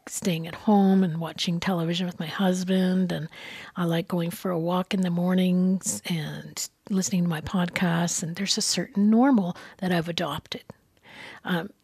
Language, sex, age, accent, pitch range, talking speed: English, female, 40-59, American, 175-215 Hz, 165 wpm